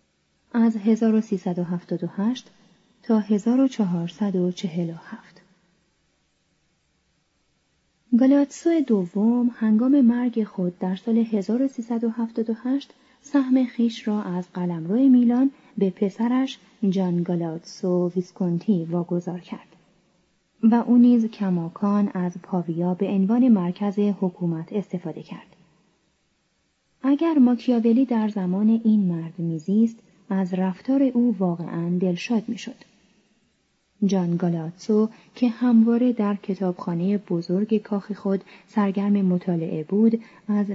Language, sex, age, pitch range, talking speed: Persian, female, 30-49, 180-230 Hz, 95 wpm